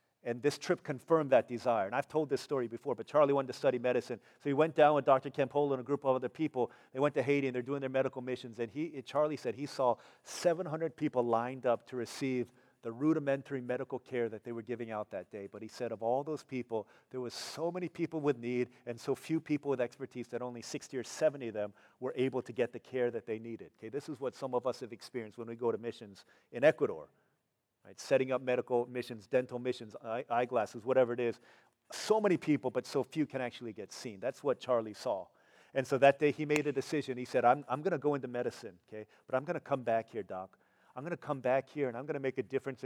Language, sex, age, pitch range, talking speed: English, male, 40-59, 120-145 Hz, 255 wpm